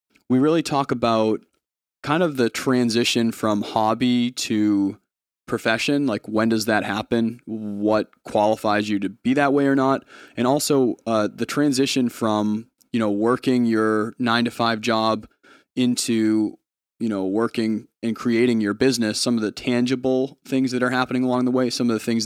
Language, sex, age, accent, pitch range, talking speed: English, male, 20-39, American, 105-125 Hz, 170 wpm